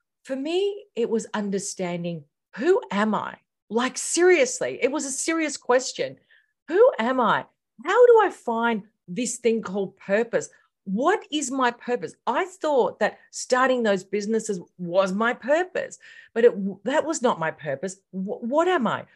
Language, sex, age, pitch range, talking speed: English, female, 40-59, 180-260 Hz, 150 wpm